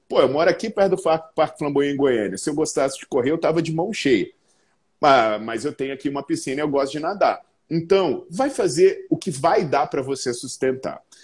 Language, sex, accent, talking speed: Portuguese, male, Brazilian, 225 wpm